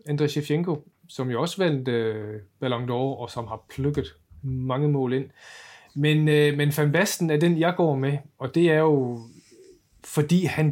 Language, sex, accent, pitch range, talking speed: Danish, male, native, 130-155 Hz, 170 wpm